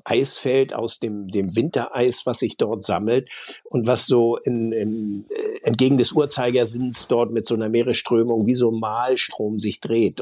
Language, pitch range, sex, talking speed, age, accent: German, 105-120 Hz, male, 165 wpm, 60-79, German